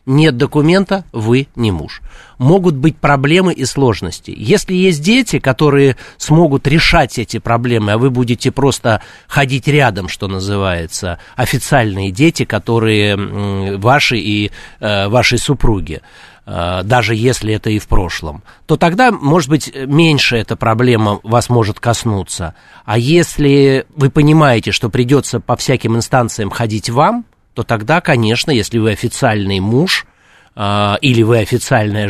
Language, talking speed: Russian, 135 wpm